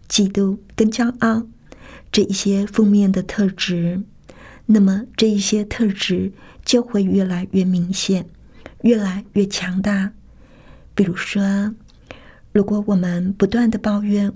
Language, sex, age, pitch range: Chinese, female, 50-69, 190-215 Hz